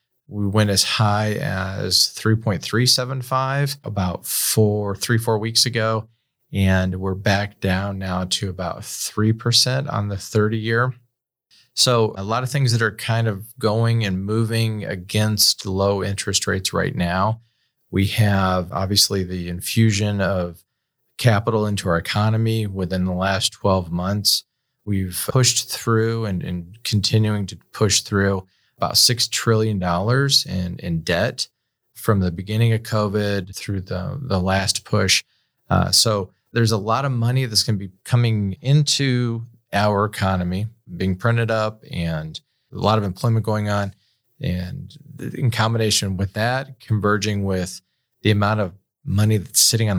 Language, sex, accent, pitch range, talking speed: English, male, American, 95-115 Hz, 145 wpm